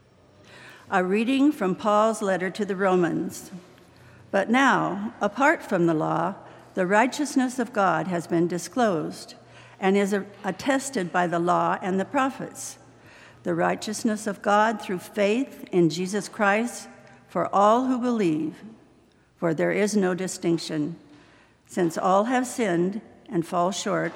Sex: female